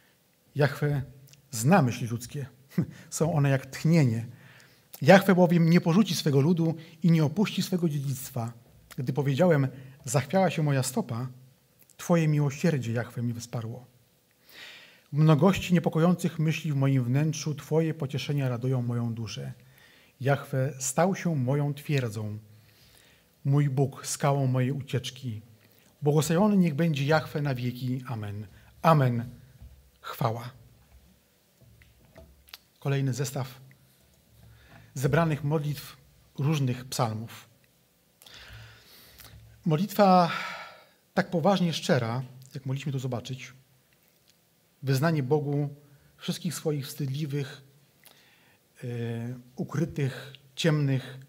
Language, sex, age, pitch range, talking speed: Polish, male, 30-49, 125-155 Hz, 95 wpm